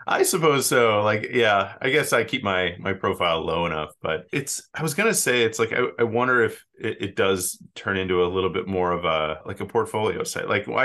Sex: male